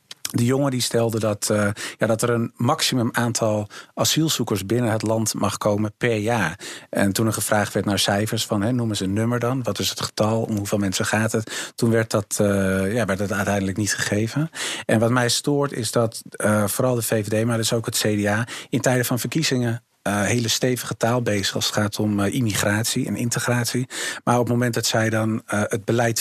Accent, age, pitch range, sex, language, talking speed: Dutch, 50-69, 105-120 Hz, male, Dutch, 215 wpm